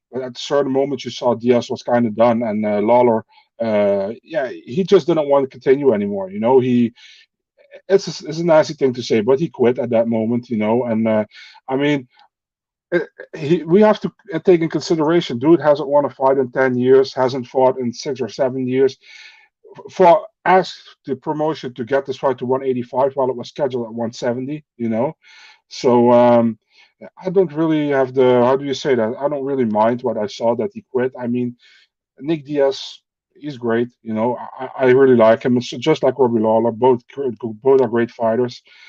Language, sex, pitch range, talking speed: English, male, 120-165 Hz, 210 wpm